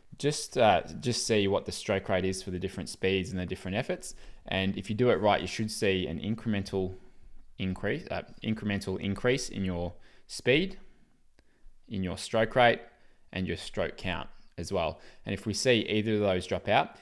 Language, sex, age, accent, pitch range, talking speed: English, male, 20-39, Australian, 95-110 Hz, 190 wpm